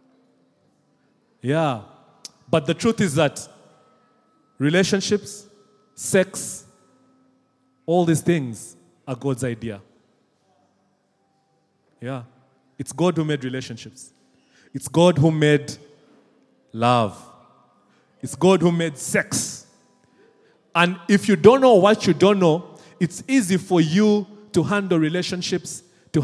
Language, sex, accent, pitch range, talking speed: English, male, South African, 135-190 Hz, 105 wpm